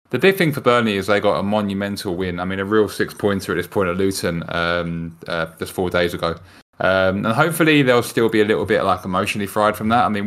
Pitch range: 90-105 Hz